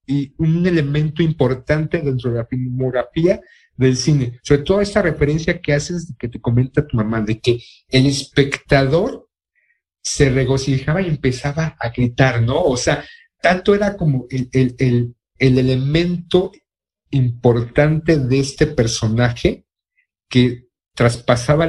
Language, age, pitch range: Spanish, 50-69, 125-160 Hz